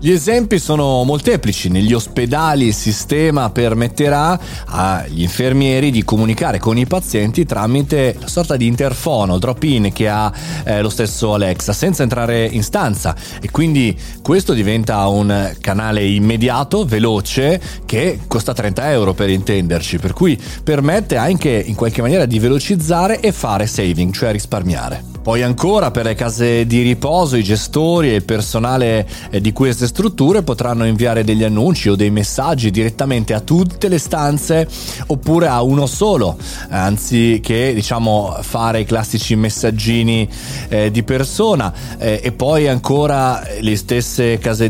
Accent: native